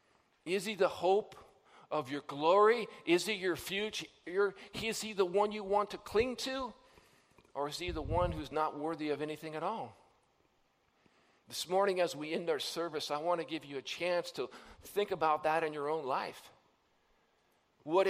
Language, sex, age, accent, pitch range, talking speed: English, male, 50-69, American, 160-210 Hz, 180 wpm